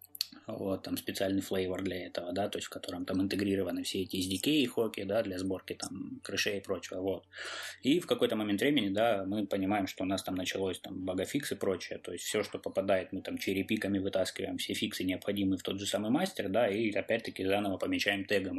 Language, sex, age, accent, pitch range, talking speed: Russian, male, 20-39, native, 95-105 Hz, 215 wpm